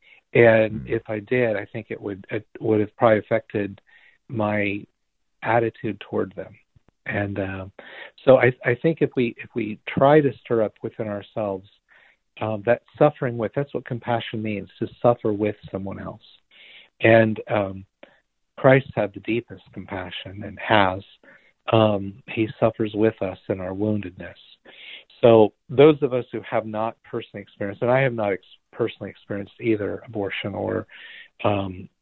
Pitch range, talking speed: 100-120 Hz, 155 wpm